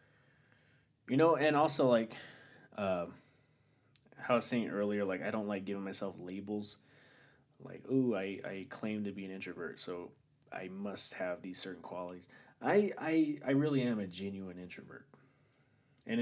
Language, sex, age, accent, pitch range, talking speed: English, male, 20-39, American, 100-135 Hz, 160 wpm